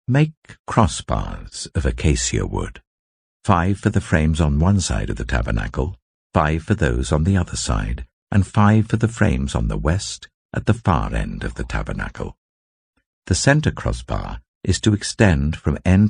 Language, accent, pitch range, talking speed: English, British, 70-100 Hz, 170 wpm